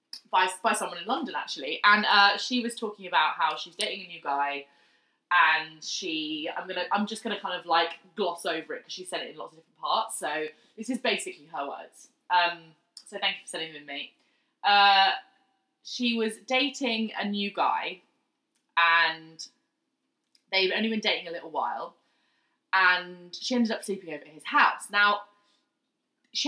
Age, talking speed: 20-39, 185 wpm